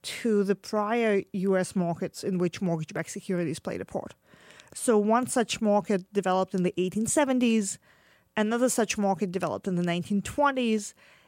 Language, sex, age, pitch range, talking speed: English, female, 30-49, 190-235 Hz, 145 wpm